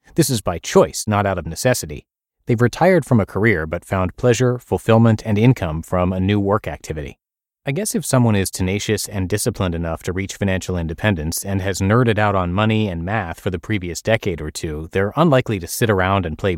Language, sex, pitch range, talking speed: English, male, 90-120 Hz, 210 wpm